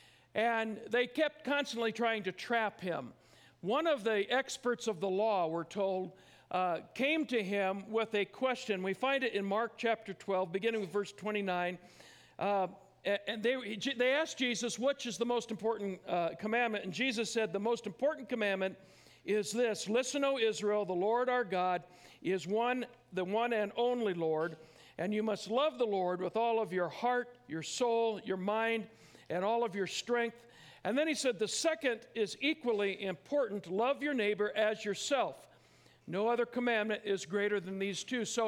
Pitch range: 200-245 Hz